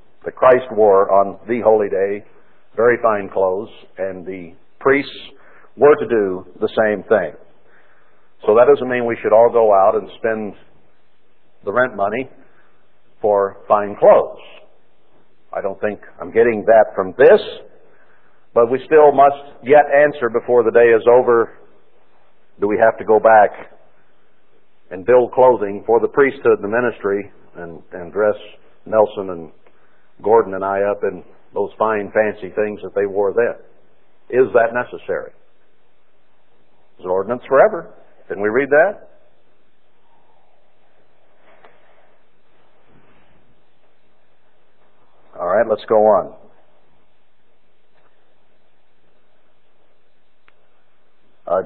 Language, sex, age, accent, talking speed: English, male, 60-79, American, 120 wpm